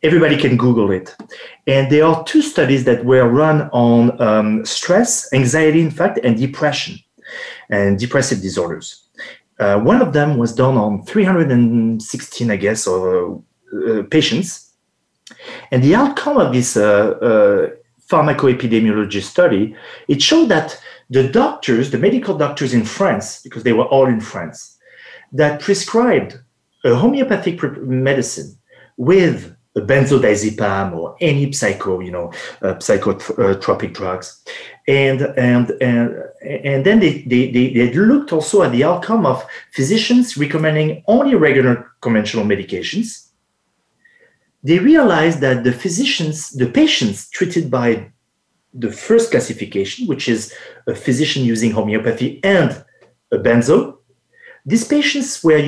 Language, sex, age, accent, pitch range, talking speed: English, male, 40-59, French, 120-185 Hz, 130 wpm